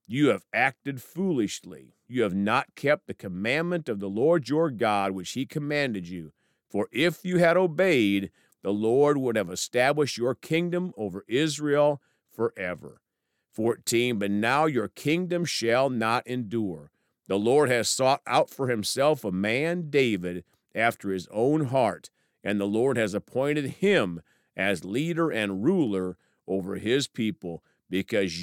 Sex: male